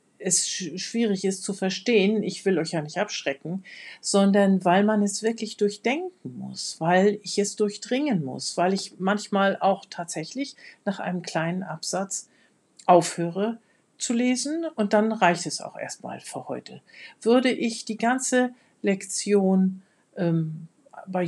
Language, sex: German, female